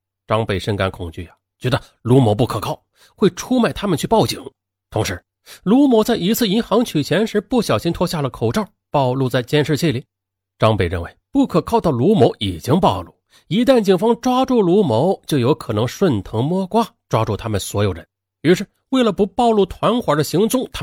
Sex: male